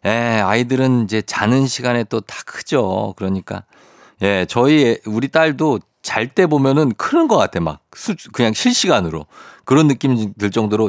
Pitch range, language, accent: 95-125 Hz, Korean, native